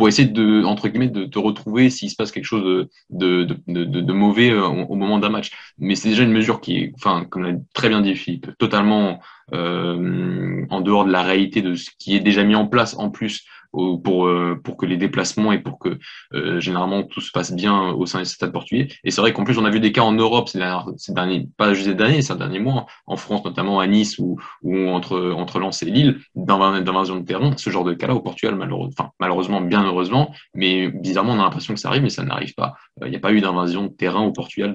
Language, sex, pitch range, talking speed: French, male, 90-110 Hz, 250 wpm